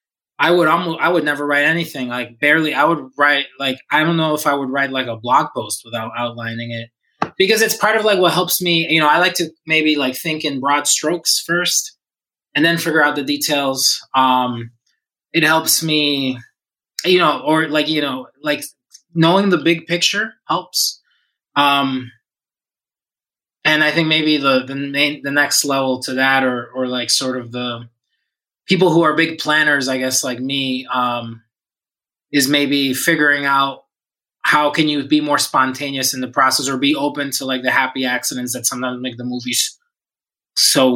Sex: male